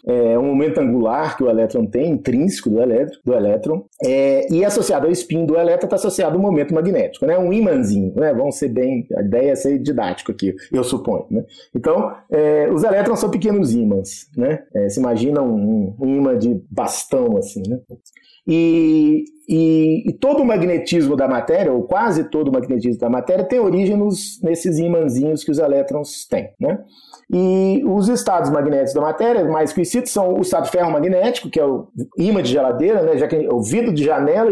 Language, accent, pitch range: Portuguese, Brazilian, 135-215 Hz